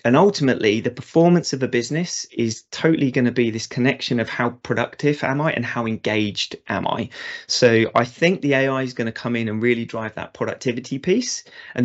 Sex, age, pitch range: male, 30-49, 110-135 Hz